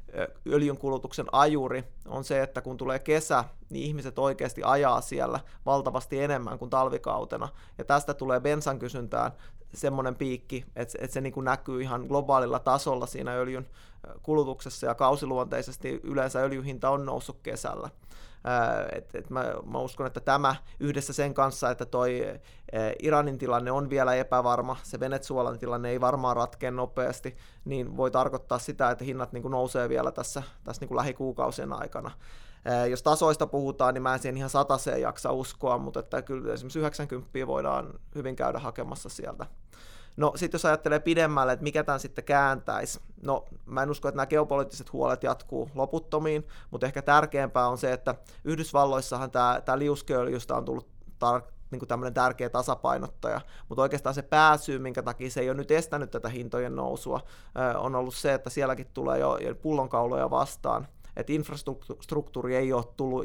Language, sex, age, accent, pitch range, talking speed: Finnish, male, 20-39, native, 125-140 Hz, 160 wpm